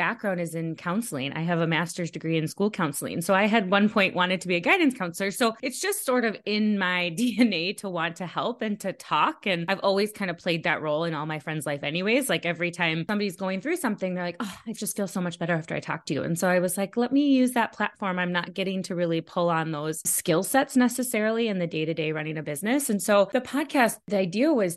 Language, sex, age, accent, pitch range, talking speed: English, female, 20-39, American, 175-220 Hz, 260 wpm